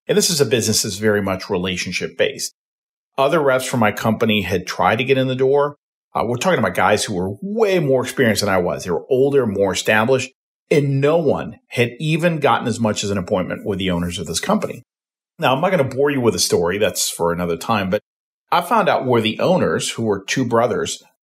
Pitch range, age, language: 100-135 Hz, 40-59, English